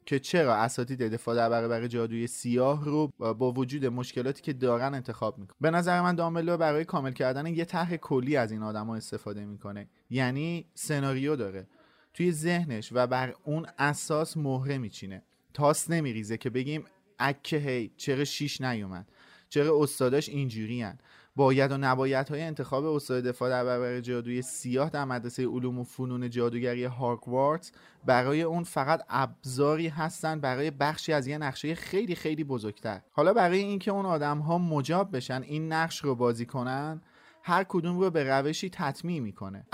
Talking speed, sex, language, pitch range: 165 wpm, male, Persian, 125-160 Hz